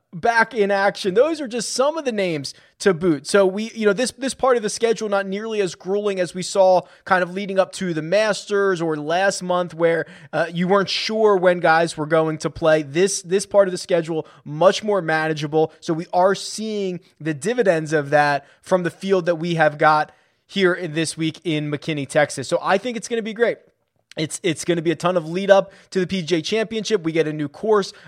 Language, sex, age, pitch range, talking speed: English, male, 20-39, 155-195 Hz, 230 wpm